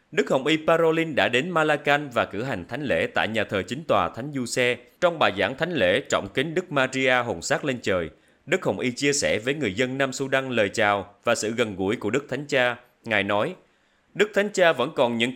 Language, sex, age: Vietnamese, male, 30-49